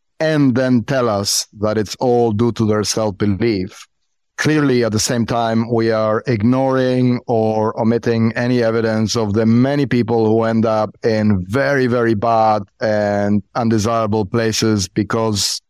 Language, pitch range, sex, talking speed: English, 110-135 Hz, male, 145 wpm